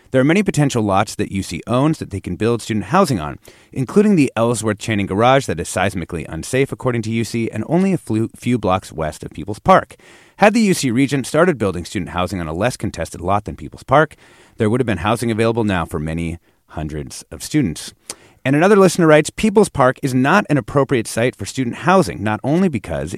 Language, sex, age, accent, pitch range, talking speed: English, male, 30-49, American, 95-150 Hz, 210 wpm